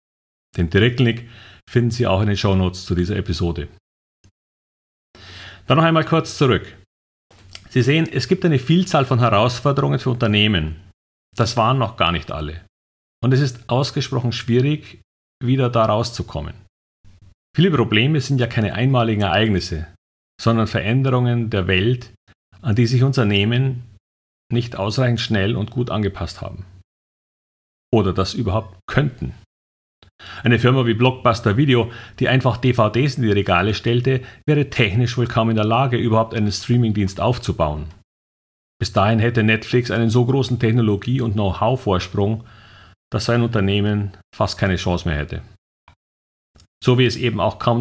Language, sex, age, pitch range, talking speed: German, male, 40-59, 95-125 Hz, 140 wpm